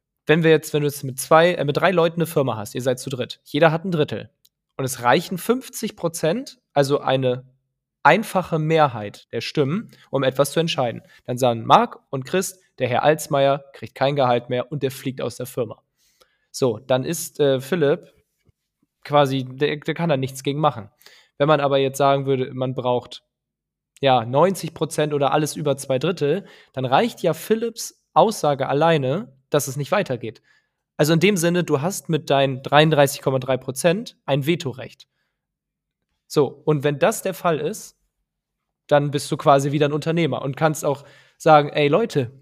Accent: German